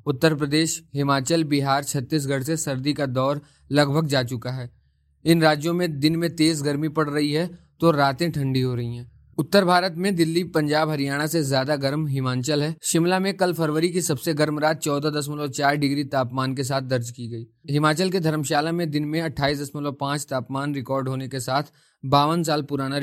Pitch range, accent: 140-165 Hz, native